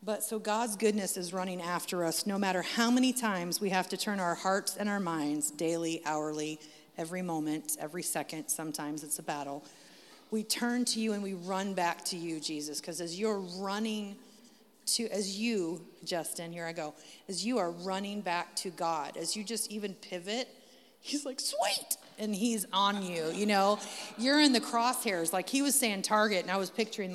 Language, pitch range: English, 170-220 Hz